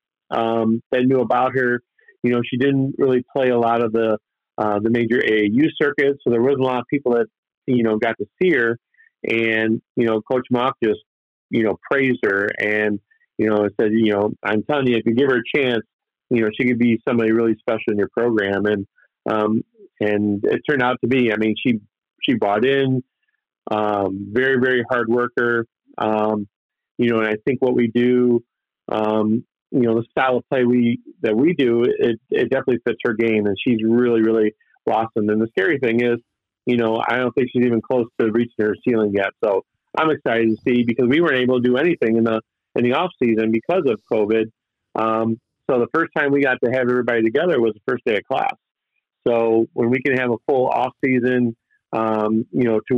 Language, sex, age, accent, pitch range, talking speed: English, male, 40-59, American, 110-125 Hz, 215 wpm